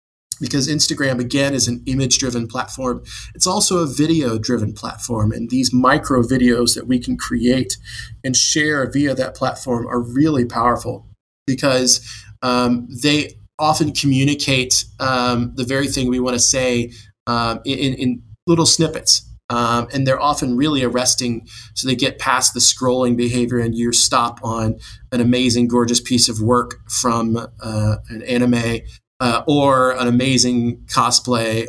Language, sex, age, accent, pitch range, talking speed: English, male, 20-39, American, 115-130 Hz, 145 wpm